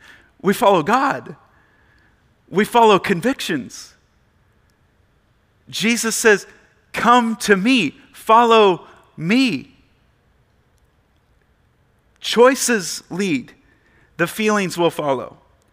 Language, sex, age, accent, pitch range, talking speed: English, male, 40-59, American, 165-230 Hz, 75 wpm